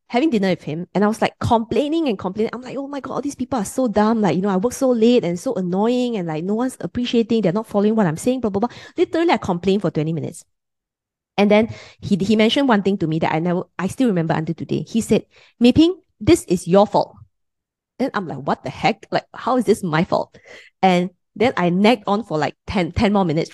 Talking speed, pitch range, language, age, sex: 250 wpm, 175-245 Hz, English, 20-39, female